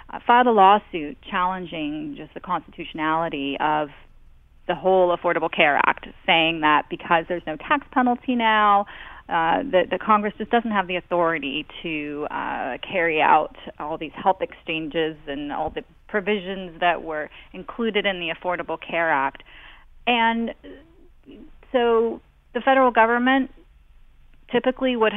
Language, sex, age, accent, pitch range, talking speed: English, female, 30-49, American, 180-230 Hz, 140 wpm